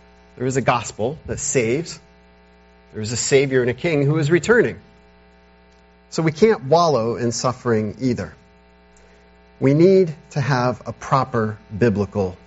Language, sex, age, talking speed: English, male, 40-59, 145 wpm